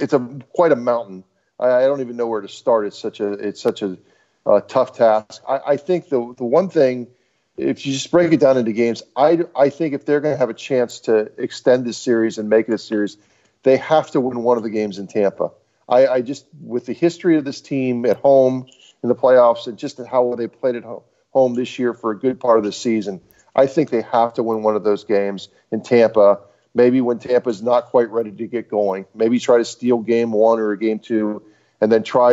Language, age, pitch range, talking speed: English, 40-59, 115-130 Hz, 245 wpm